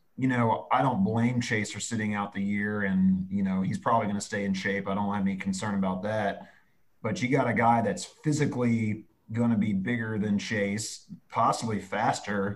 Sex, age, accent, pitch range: male, 30-49, American, 100-120 Hz